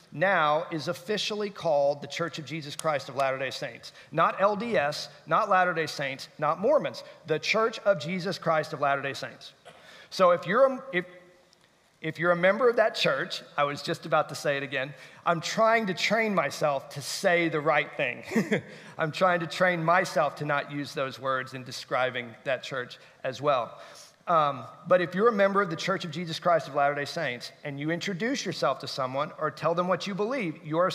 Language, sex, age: English, male, 40-59